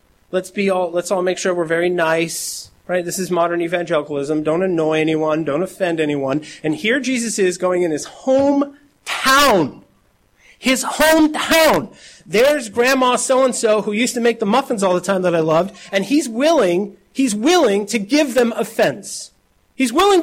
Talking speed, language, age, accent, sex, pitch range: 180 wpm, English, 40-59, American, male, 185-250 Hz